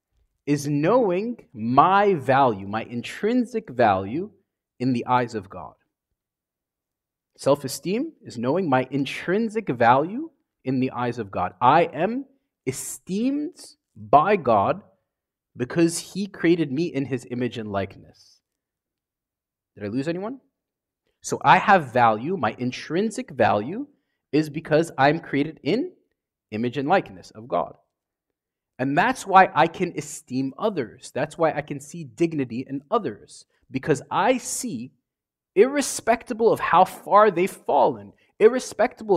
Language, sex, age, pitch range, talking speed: English, male, 30-49, 125-200 Hz, 125 wpm